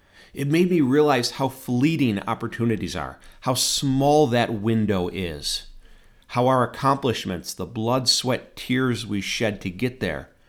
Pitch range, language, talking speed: 95-135 Hz, English, 145 wpm